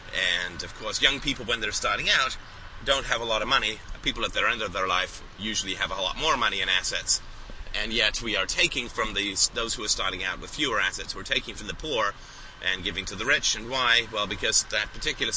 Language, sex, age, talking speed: English, male, 30-49, 235 wpm